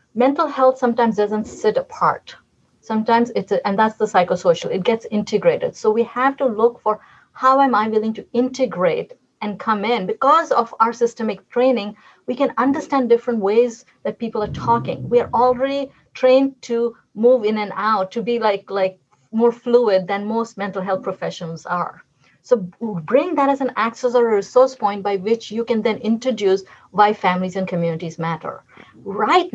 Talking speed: 175 wpm